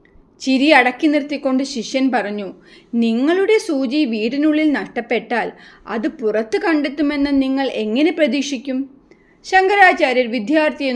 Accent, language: Indian, English